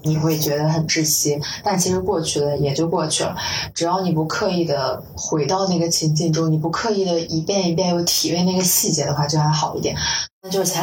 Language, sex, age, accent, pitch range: Chinese, female, 20-39, native, 155-175 Hz